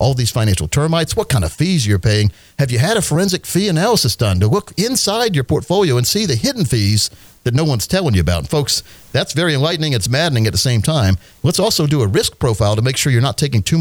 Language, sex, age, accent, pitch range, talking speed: English, male, 50-69, American, 110-150 Hz, 250 wpm